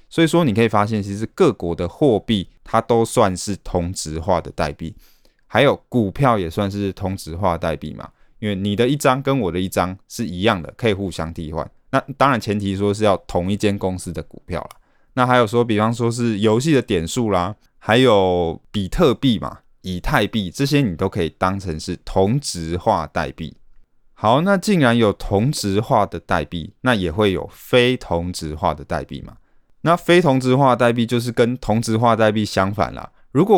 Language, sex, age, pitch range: Chinese, male, 20-39, 90-120 Hz